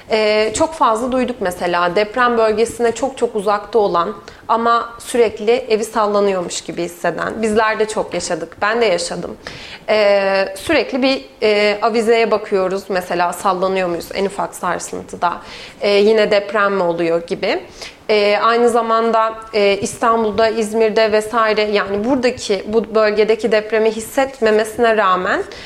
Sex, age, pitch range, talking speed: female, 30-49, 200-235 Hz, 130 wpm